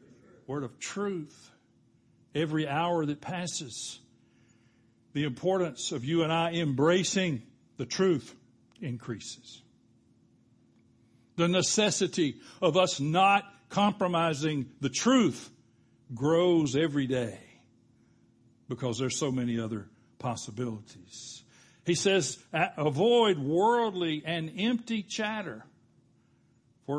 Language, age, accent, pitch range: English, 60-79, American, 125-185 Hz